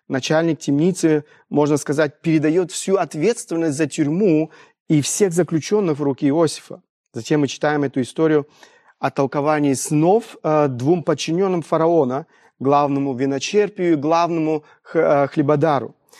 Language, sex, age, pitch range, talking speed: Russian, male, 30-49, 140-175 Hz, 115 wpm